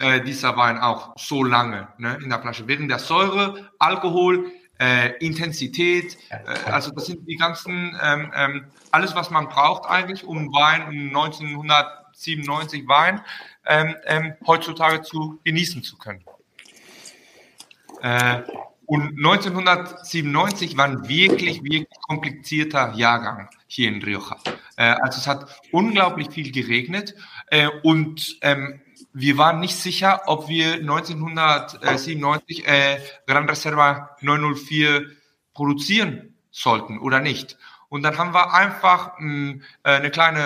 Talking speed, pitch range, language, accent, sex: 130 wpm, 140-165 Hz, German, German, male